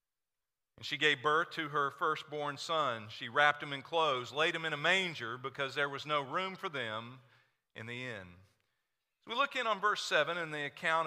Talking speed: 200 wpm